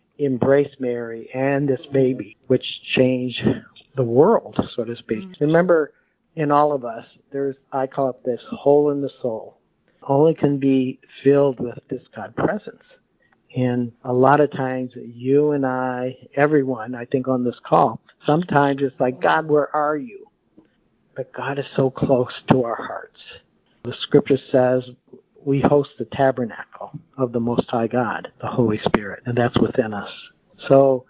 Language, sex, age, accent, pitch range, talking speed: English, male, 50-69, American, 125-140 Hz, 160 wpm